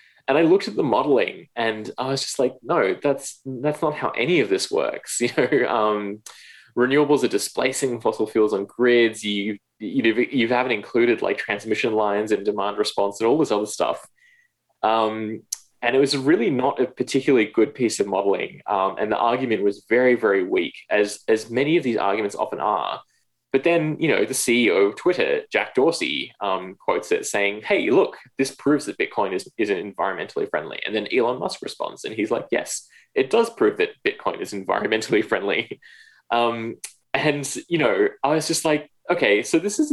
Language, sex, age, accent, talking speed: English, male, 20-39, Australian, 190 wpm